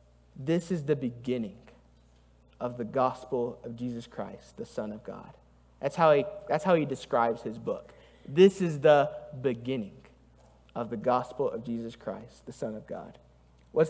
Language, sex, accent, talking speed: English, male, American, 155 wpm